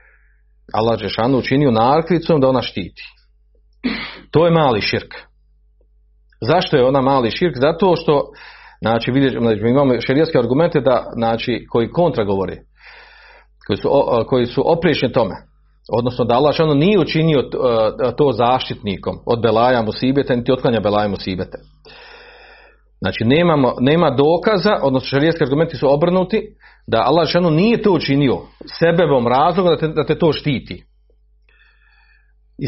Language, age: Croatian, 40-59